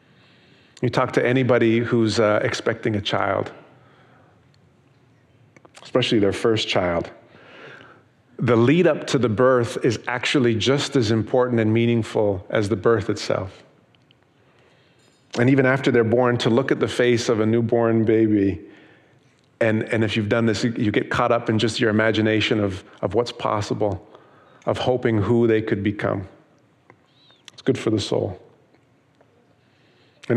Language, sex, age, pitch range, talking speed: English, male, 40-59, 110-130 Hz, 145 wpm